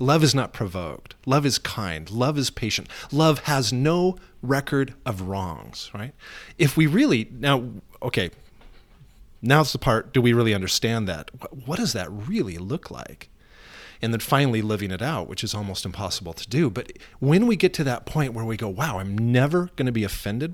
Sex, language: male, English